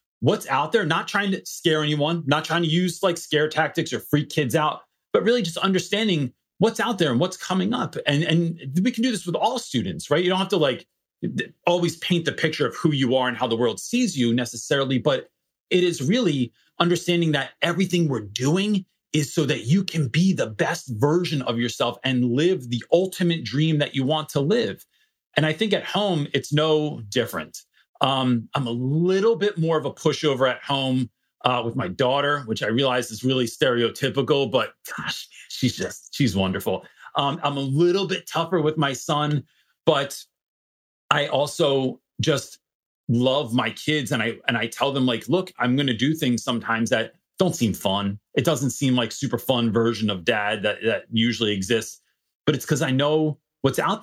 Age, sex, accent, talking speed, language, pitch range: 30-49, male, American, 200 wpm, English, 125-170 Hz